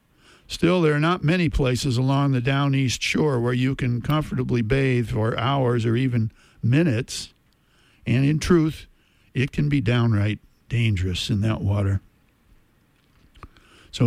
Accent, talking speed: American, 140 wpm